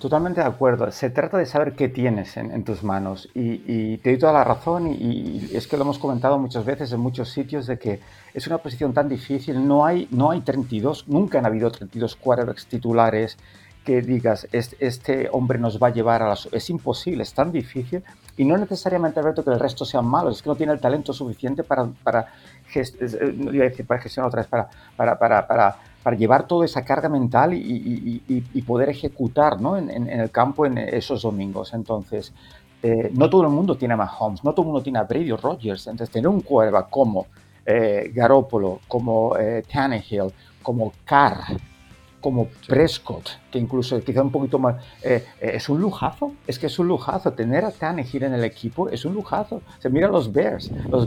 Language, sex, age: Spanish, male, 50-69